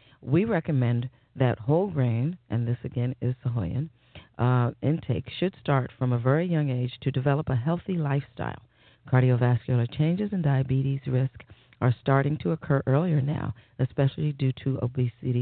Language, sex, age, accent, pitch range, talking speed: English, female, 40-59, American, 125-150 Hz, 150 wpm